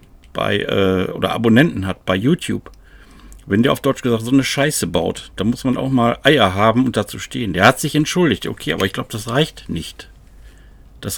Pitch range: 95-130 Hz